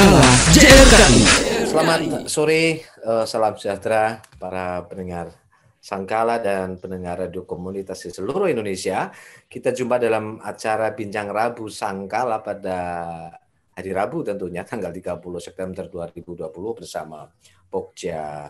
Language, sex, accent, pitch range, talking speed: Indonesian, male, native, 90-115 Hz, 105 wpm